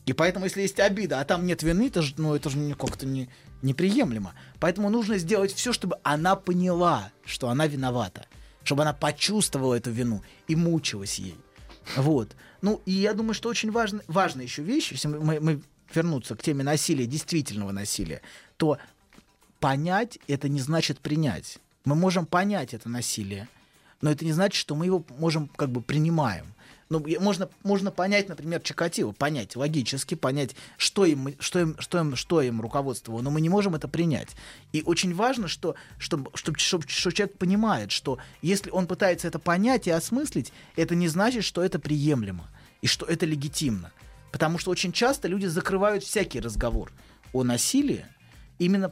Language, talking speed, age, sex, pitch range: Russian, 160 wpm, 20-39, male, 135-185 Hz